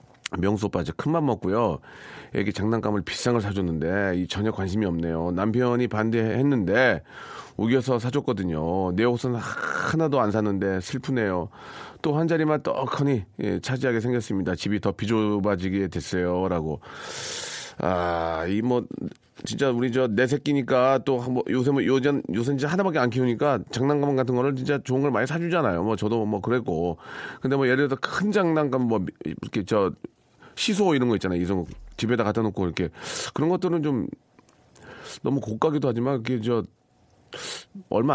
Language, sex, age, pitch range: Korean, male, 40-59, 100-135 Hz